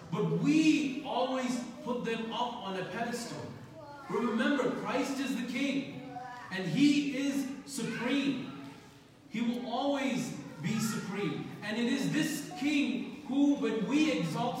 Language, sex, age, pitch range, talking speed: English, male, 40-59, 165-235 Hz, 130 wpm